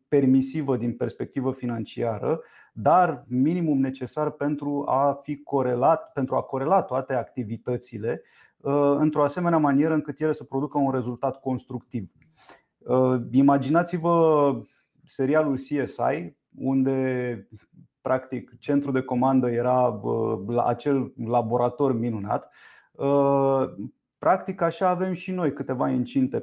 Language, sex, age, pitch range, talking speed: Romanian, male, 30-49, 125-155 Hz, 105 wpm